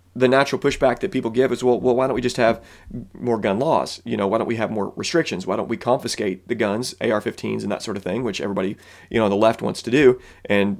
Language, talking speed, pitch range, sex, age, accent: English, 265 wpm, 110-140 Hz, male, 30-49, American